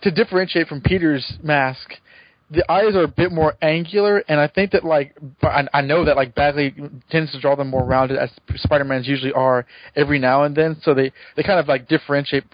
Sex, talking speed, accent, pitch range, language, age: male, 210 wpm, American, 130-165 Hz, English, 20-39